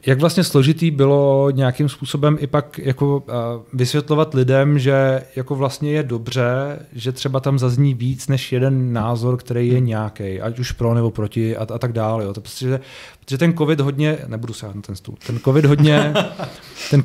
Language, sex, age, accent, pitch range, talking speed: Czech, male, 30-49, native, 125-145 Hz, 190 wpm